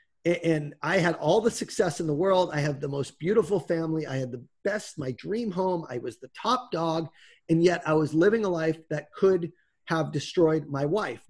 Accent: American